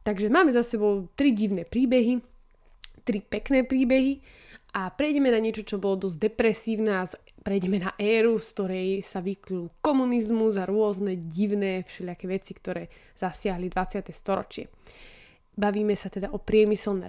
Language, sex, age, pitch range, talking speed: Slovak, female, 20-39, 195-245 Hz, 145 wpm